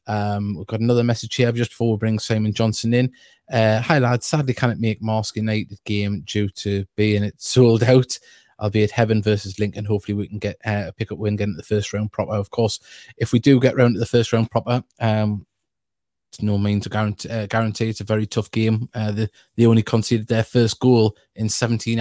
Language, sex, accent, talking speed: English, male, British, 230 wpm